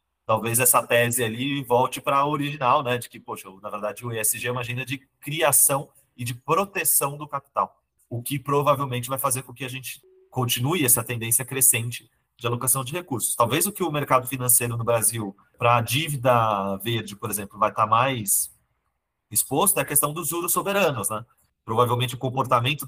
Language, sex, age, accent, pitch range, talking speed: Portuguese, male, 30-49, Brazilian, 115-135 Hz, 190 wpm